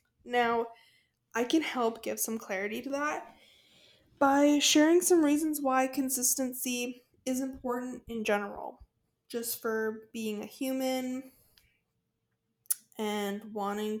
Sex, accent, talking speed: female, American, 110 wpm